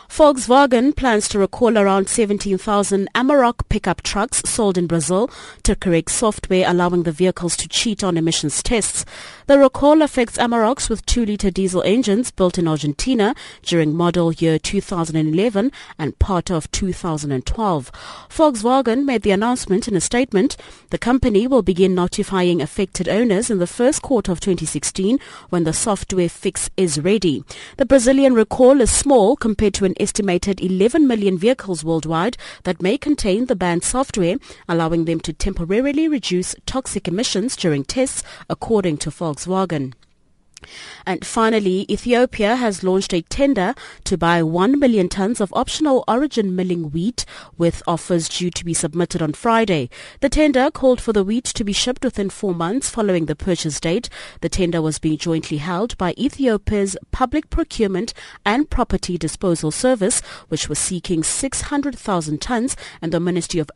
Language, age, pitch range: English, 30-49, 170-240 Hz